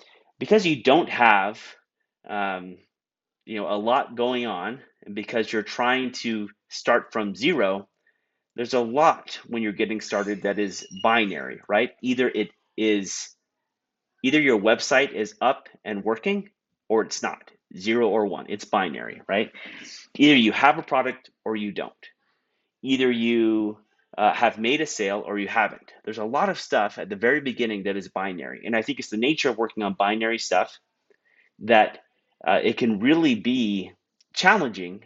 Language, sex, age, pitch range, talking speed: English, male, 30-49, 105-150 Hz, 165 wpm